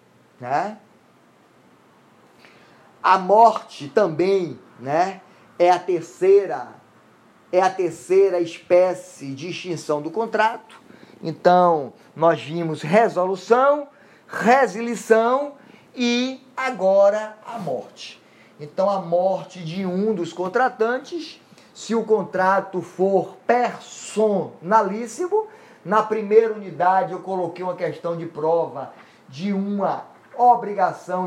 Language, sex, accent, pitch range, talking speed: Portuguese, male, Brazilian, 175-225 Hz, 95 wpm